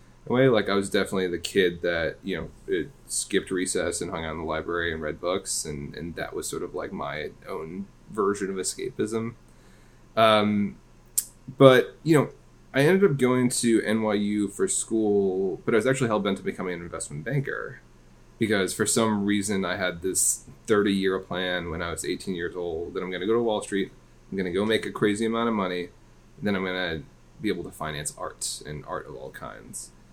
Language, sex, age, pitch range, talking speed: English, male, 20-39, 90-120 Hz, 205 wpm